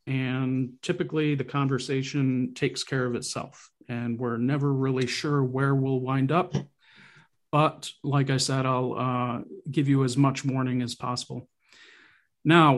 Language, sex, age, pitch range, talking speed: English, male, 40-59, 130-150 Hz, 145 wpm